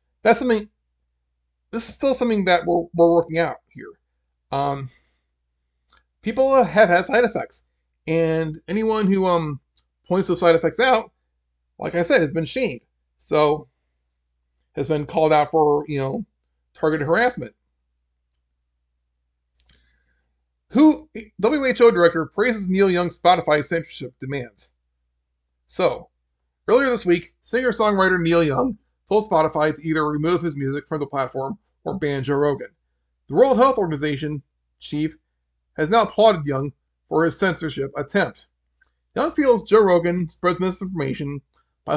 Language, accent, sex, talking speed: English, American, male, 135 wpm